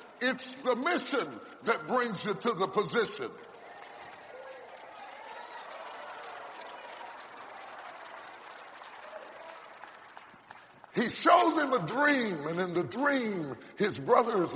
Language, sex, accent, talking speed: English, female, American, 80 wpm